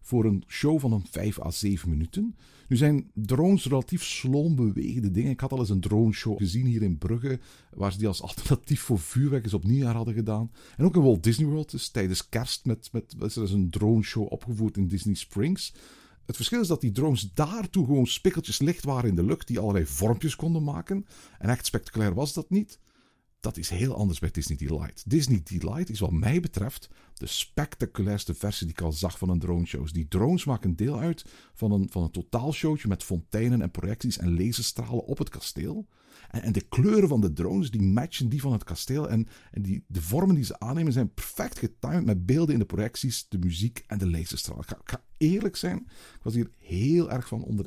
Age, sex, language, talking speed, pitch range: 50-69, male, Dutch, 220 wpm, 100-145 Hz